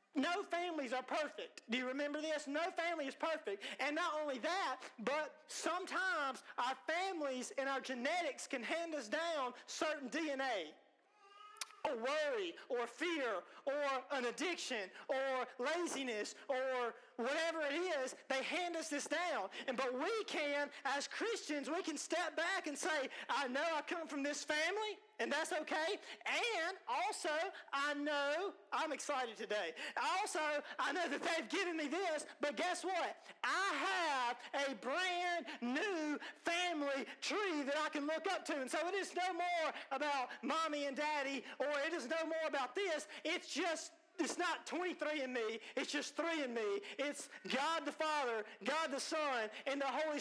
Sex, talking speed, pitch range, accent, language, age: male, 165 wpm, 265-335 Hz, American, English, 40-59